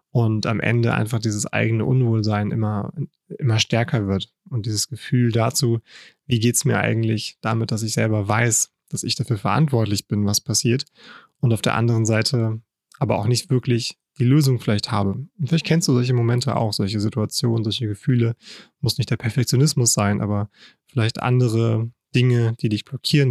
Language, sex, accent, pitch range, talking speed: German, male, German, 110-130 Hz, 175 wpm